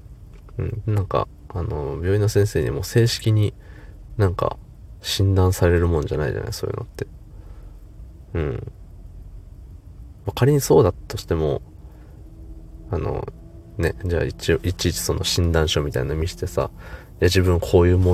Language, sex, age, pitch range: Japanese, male, 20-39, 85-105 Hz